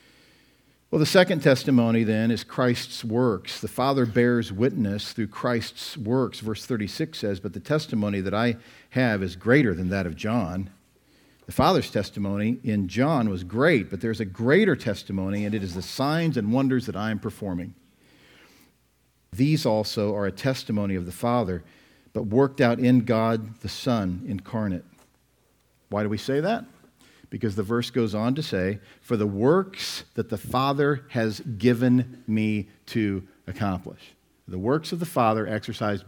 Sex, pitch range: male, 100-125 Hz